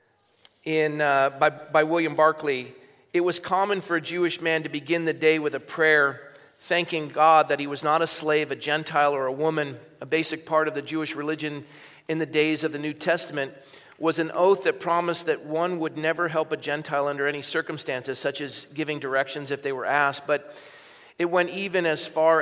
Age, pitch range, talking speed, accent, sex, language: 40-59, 140-160 Hz, 205 wpm, American, male, English